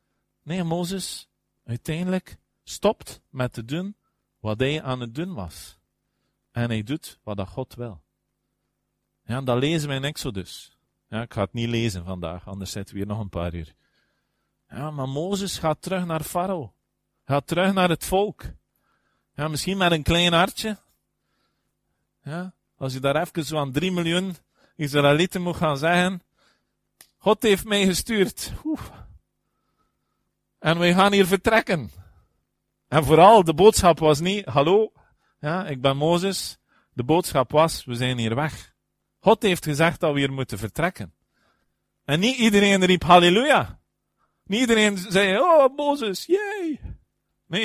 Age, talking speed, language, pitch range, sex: 40-59, 150 wpm, Dutch, 115-185 Hz, male